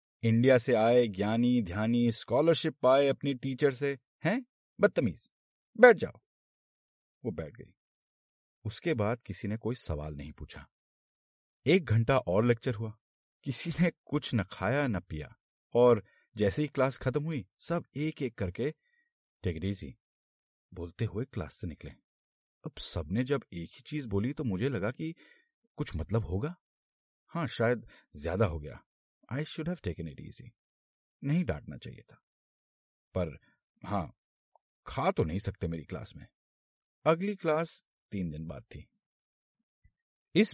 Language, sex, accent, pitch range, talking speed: Hindi, male, native, 95-140 Hz, 145 wpm